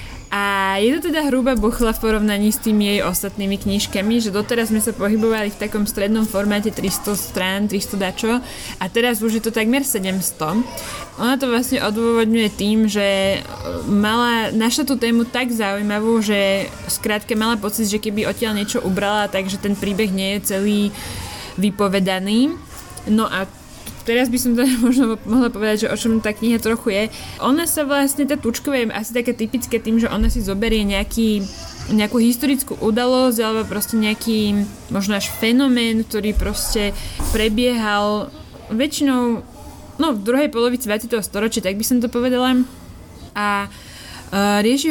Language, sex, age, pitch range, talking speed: Slovak, female, 20-39, 205-245 Hz, 155 wpm